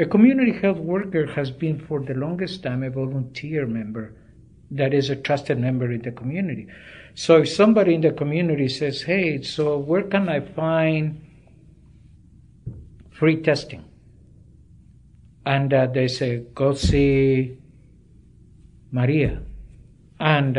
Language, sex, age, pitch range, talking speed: English, male, 60-79, 125-165 Hz, 130 wpm